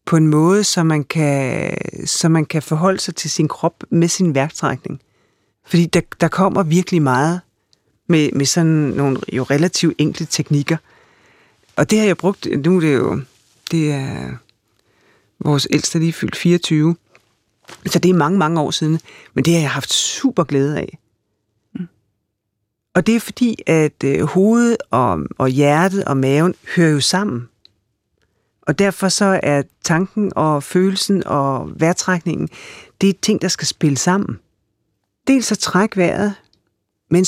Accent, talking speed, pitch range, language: native, 160 wpm, 140-185 Hz, Danish